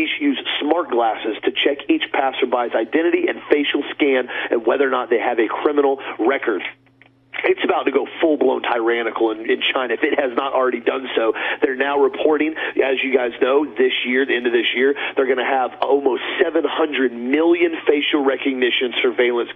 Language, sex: English, male